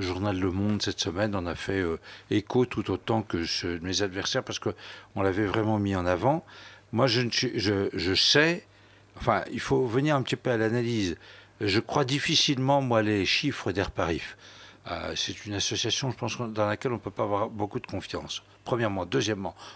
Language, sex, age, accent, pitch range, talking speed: French, male, 60-79, French, 100-135 Hz, 195 wpm